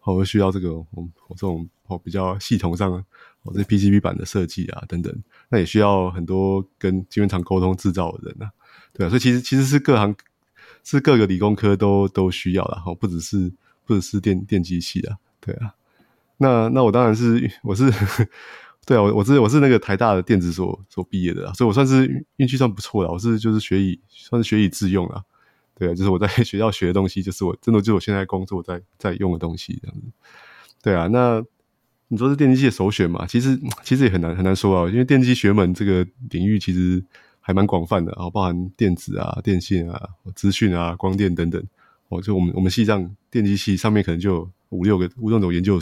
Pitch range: 90-115 Hz